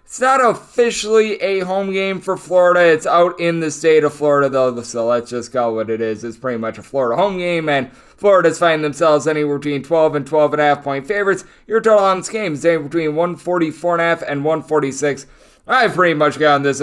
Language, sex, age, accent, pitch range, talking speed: English, male, 20-39, American, 140-170 Hz, 225 wpm